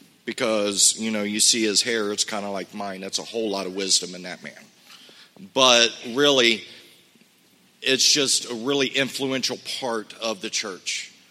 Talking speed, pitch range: 170 wpm, 105-120 Hz